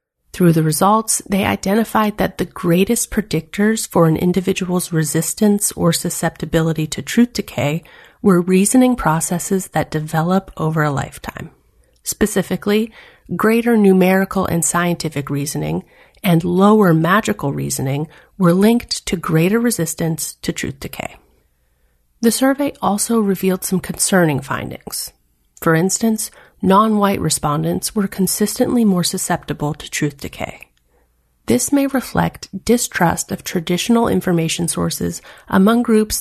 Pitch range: 160-215 Hz